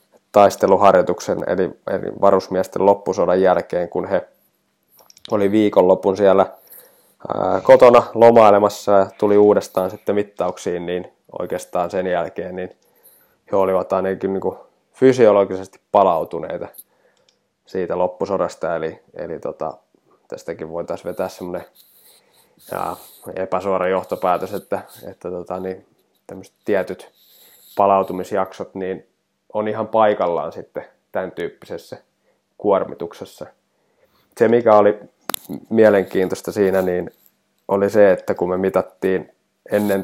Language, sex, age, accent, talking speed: Finnish, male, 20-39, native, 95 wpm